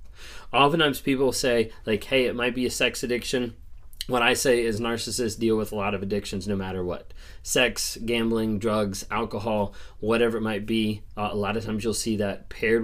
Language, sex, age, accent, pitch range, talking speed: English, male, 20-39, American, 100-120 Hz, 190 wpm